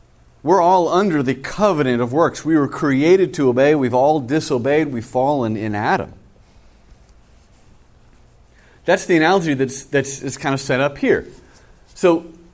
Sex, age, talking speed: male, 40-59, 150 wpm